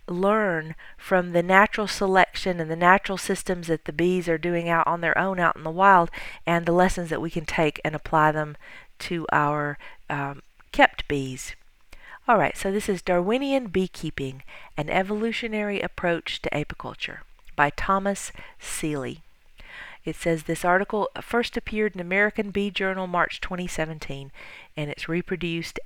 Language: English